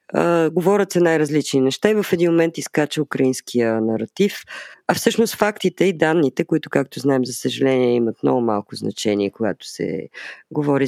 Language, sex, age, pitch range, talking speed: Bulgarian, female, 20-39, 135-180 Hz, 155 wpm